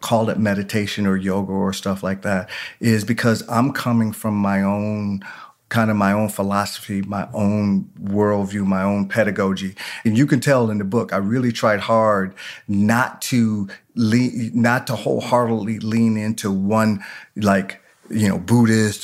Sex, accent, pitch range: male, American, 105-125 Hz